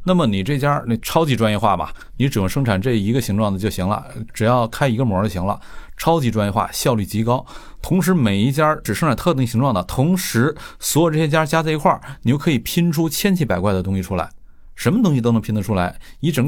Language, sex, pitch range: Chinese, male, 105-140 Hz